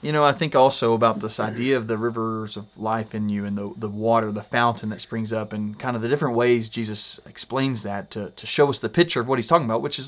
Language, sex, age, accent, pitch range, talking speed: English, male, 30-49, American, 110-135 Hz, 275 wpm